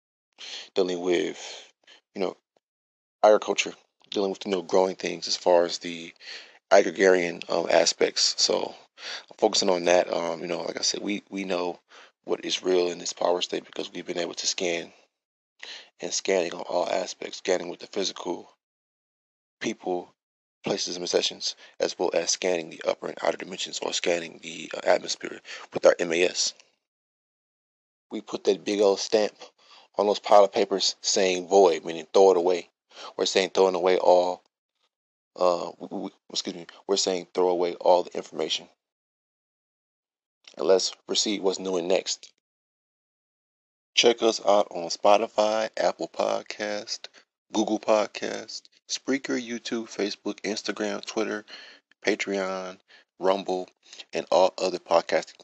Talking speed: 145 wpm